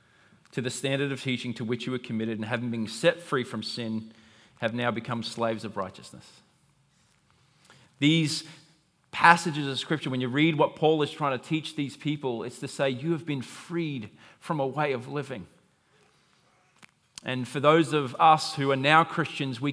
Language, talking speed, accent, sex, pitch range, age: English, 185 wpm, Australian, male, 130-170 Hz, 30-49